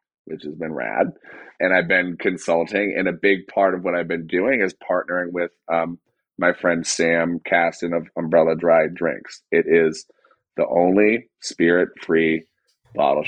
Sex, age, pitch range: male, 30-49, 85-100 Hz